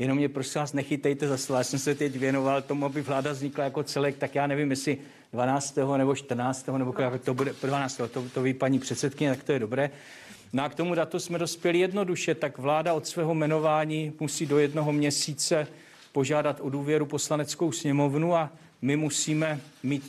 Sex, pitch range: male, 135-150 Hz